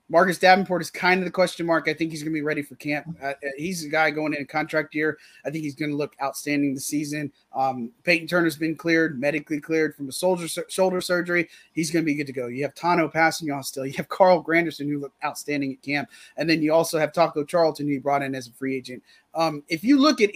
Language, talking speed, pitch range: English, 260 wpm, 145-175 Hz